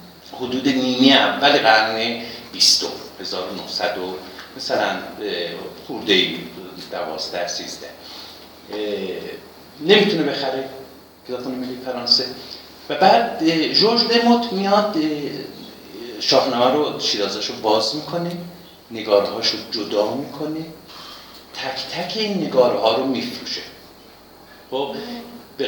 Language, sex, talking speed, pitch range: Persian, male, 95 wpm, 125-175 Hz